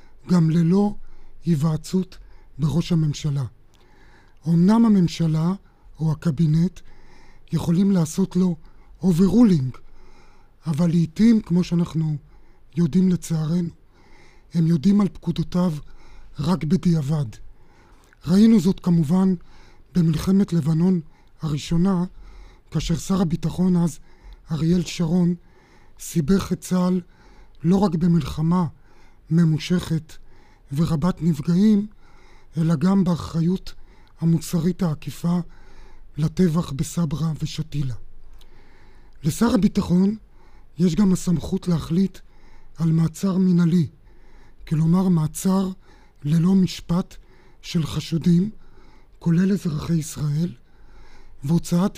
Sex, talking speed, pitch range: male, 85 wpm, 140-180 Hz